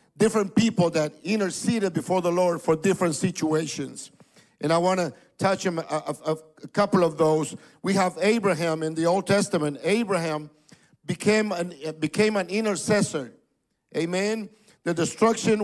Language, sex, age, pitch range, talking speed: English, male, 50-69, 175-225 Hz, 140 wpm